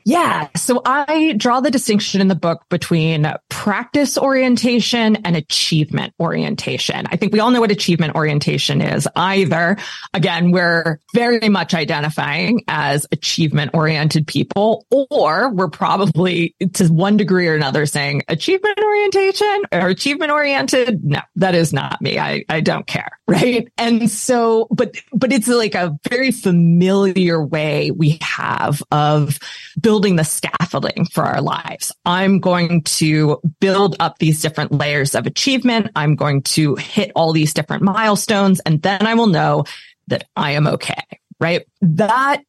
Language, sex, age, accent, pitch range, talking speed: English, female, 20-39, American, 160-220 Hz, 150 wpm